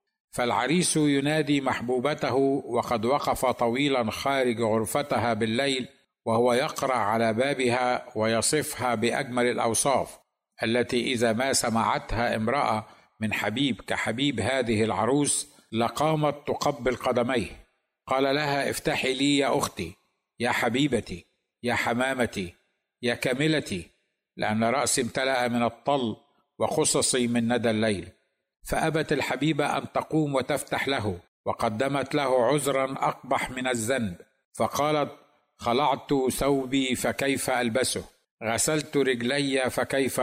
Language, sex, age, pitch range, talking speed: Arabic, male, 60-79, 120-140 Hz, 105 wpm